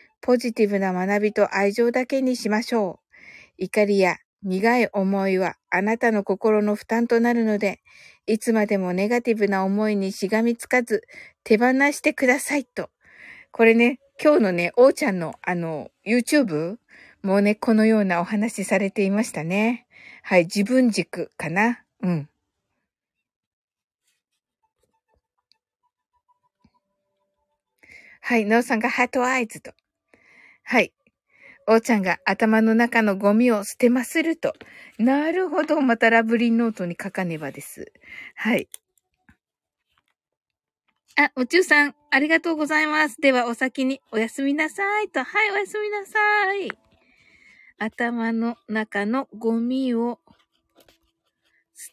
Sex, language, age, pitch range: female, Japanese, 60-79, 205-275 Hz